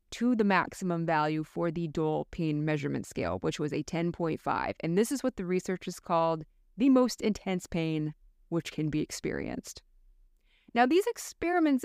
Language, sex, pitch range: English, female, 155-225 Hz